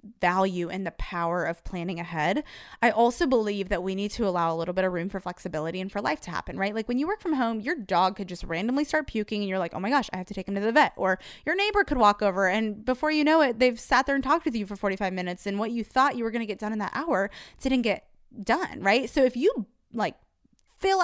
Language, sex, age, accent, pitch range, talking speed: English, female, 20-39, American, 200-275 Hz, 280 wpm